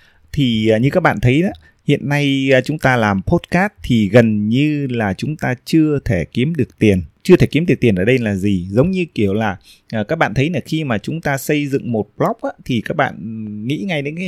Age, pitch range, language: 20-39, 110-155 Hz, Vietnamese